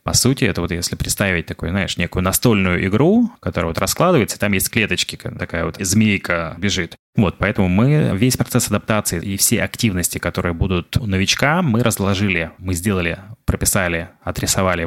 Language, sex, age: Russian, male, 20-39